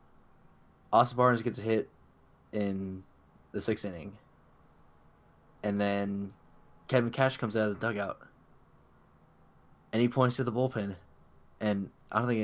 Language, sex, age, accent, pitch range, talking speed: English, male, 20-39, American, 95-115 Hz, 135 wpm